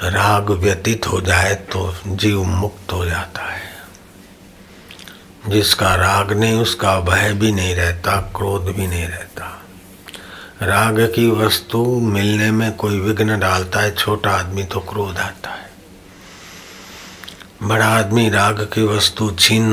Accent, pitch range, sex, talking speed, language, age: native, 95-105 Hz, male, 130 wpm, Hindi, 60-79